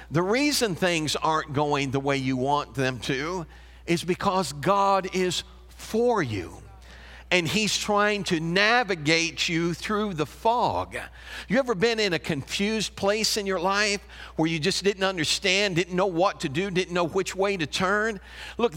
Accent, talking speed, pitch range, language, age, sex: American, 170 wpm, 180-245 Hz, English, 50-69, male